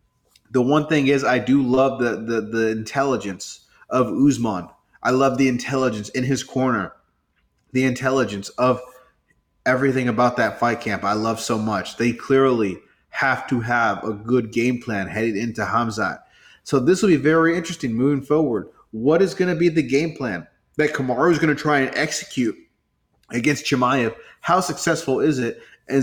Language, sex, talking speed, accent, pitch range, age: English, male, 170 wpm, American, 110-135 Hz, 30-49